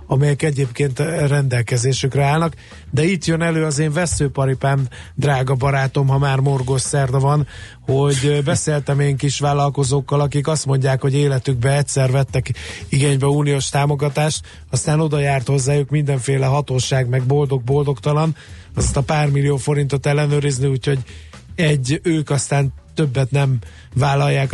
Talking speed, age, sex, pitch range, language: 130 wpm, 30-49, male, 125-145 Hz, Hungarian